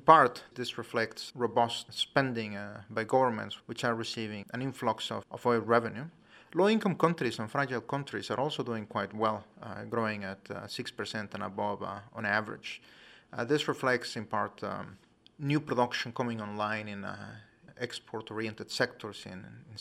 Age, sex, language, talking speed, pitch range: 30-49, male, English, 160 wpm, 110-125 Hz